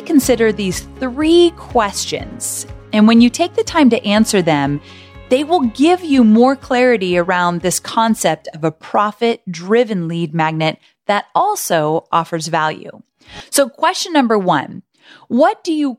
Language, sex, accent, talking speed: English, female, American, 145 wpm